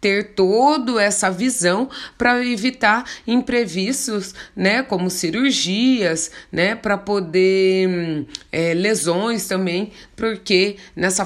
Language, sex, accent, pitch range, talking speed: Portuguese, female, Brazilian, 185-250 Hz, 95 wpm